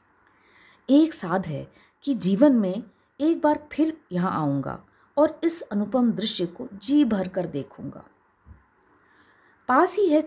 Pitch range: 175-260 Hz